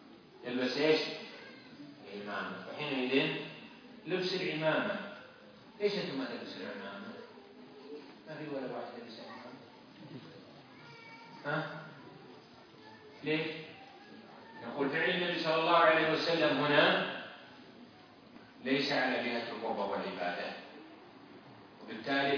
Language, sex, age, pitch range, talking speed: French, male, 40-59, 125-185 Hz, 55 wpm